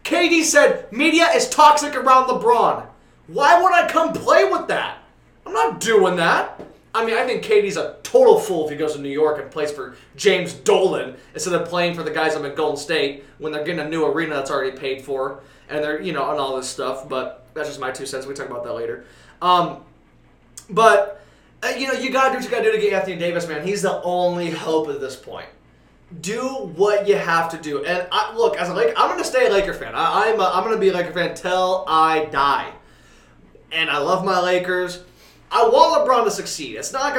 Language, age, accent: English, 20-39, American